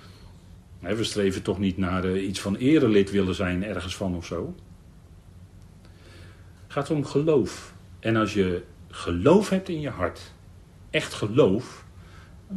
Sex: male